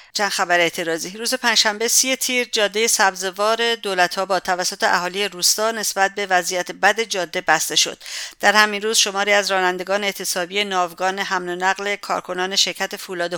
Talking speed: 160 wpm